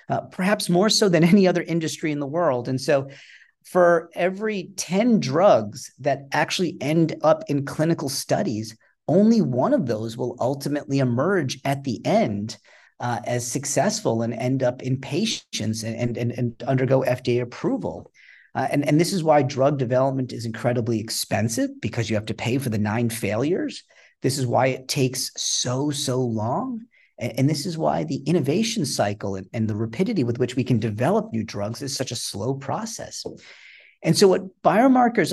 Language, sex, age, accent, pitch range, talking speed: English, male, 40-59, American, 115-160 Hz, 175 wpm